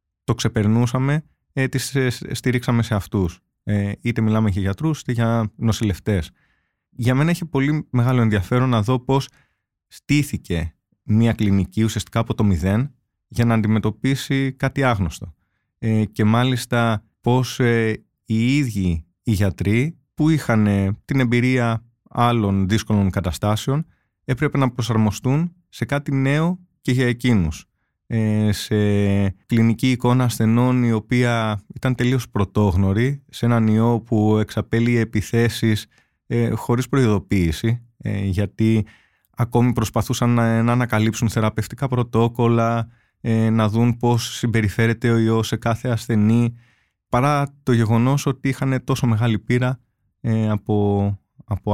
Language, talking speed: Greek, 120 wpm